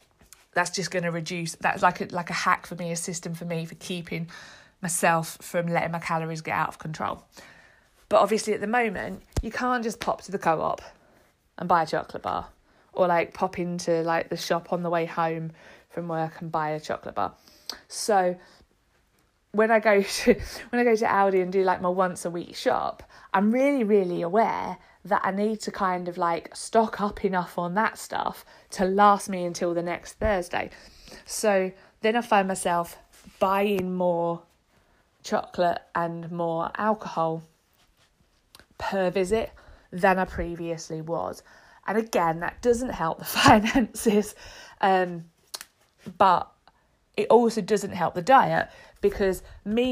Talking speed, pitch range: 165 wpm, 170-205 Hz